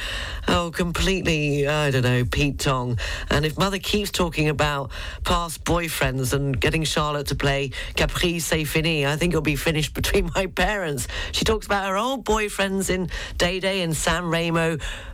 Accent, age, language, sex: British, 40-59, English, female